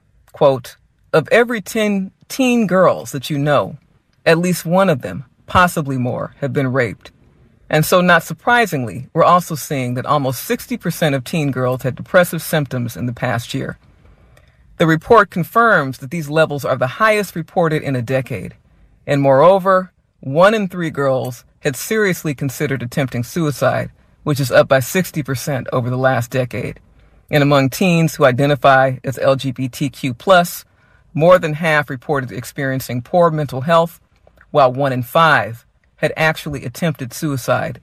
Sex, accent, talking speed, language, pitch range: female, American, 150 wpm, English, 130-165 Hz